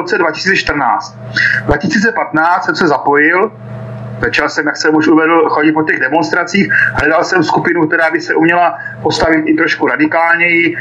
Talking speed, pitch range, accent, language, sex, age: 160 wpm, 145-170 Hz, native, Czech, male, 40-59